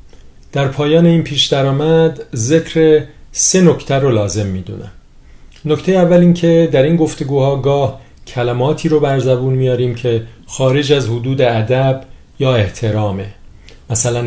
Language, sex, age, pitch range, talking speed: Persian, male, 40-59, 110-135 Hz, 125 wpm